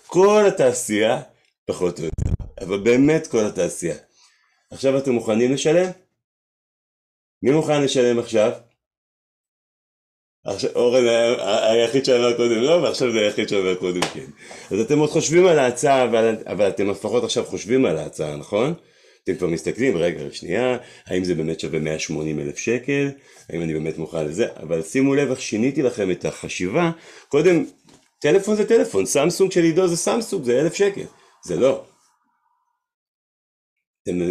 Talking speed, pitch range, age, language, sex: 145 wpm, 110-160 Hz, 40-59, Hebrew, male